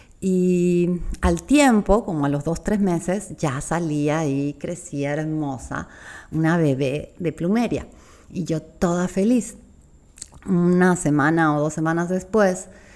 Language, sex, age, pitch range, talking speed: Spanish, female, 40-59, 145-185 Hz, 135 wpm